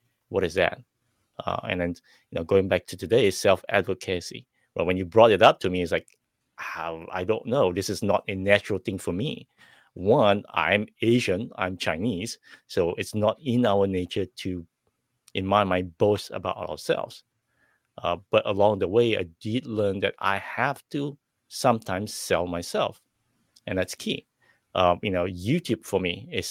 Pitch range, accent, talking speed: 90-115 Hz, Japanese, 180 wpm